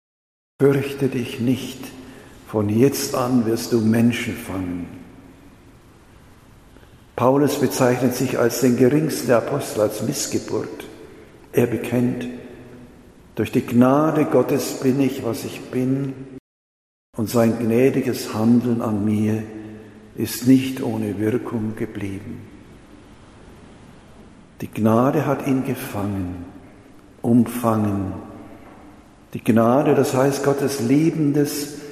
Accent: German